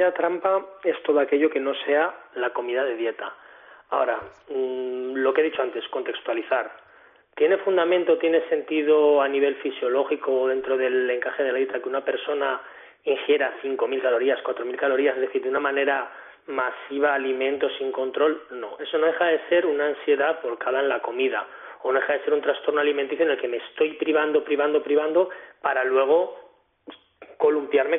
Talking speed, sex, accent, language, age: 170 wpm, male, Spanish, Spanish, 30-49